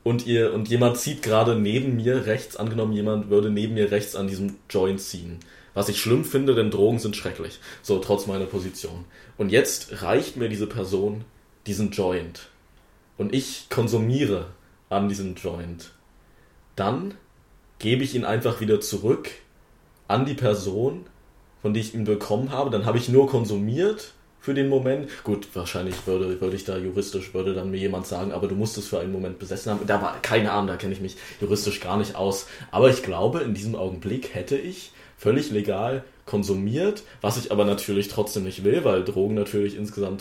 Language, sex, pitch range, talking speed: German, male, 95-115 Hz, 185 wpm